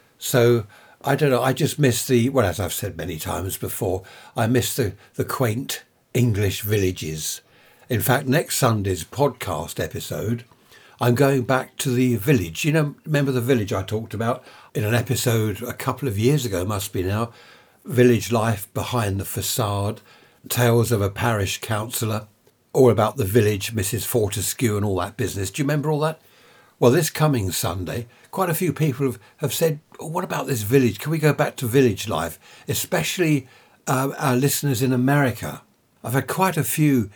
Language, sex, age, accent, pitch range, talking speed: English, male, 60-79, British, 105-130 Hz, 180 wpm